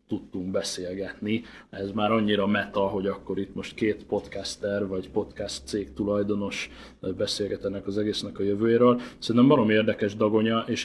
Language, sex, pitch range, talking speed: Hungarian, male, 100-115 Hz, 145 wpm